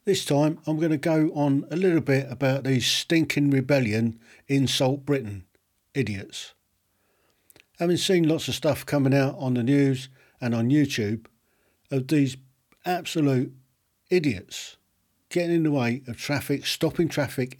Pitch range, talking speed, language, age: 125-155 Hz, 145 wpm, English, 50-69